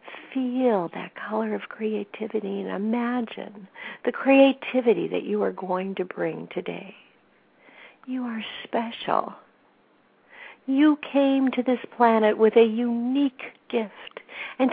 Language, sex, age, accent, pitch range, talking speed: English, female, 60-79, American, 205-255 Hz, 120 wpm